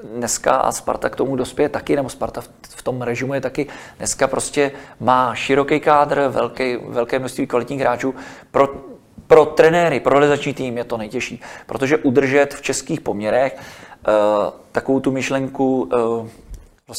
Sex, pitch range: male, 120-140 Hz